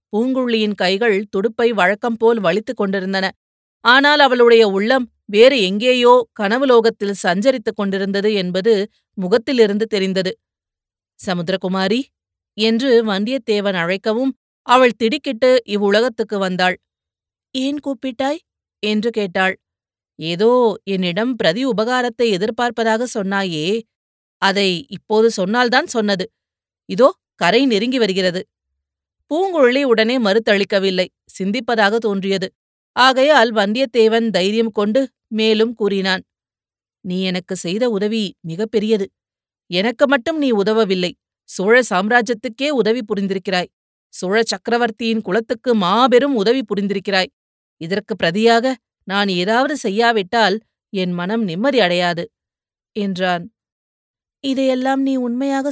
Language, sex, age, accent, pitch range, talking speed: Tamil, female, 30-49, native, 190-245 Hz, 90 wpm